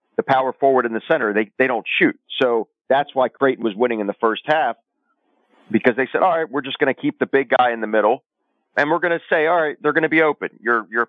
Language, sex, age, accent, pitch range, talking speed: English, male, 40-59, American, 105-125 Hz, 270 wpm